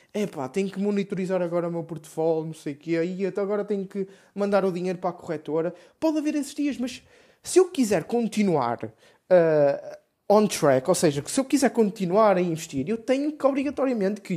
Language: Portuguese